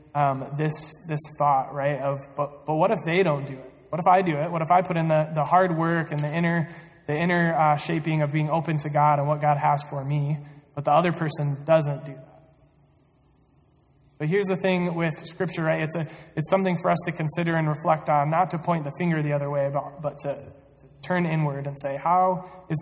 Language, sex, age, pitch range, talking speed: English, male, 20-39, 140-160 Hz, 240 wpm